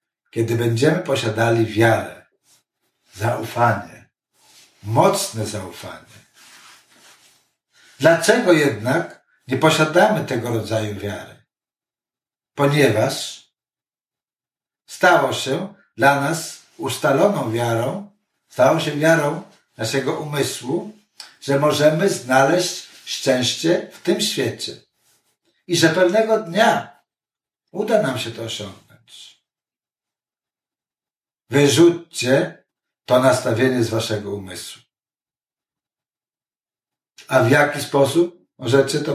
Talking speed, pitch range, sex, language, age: 85 wpm, 120-175 Hz, male, Polish, 60-79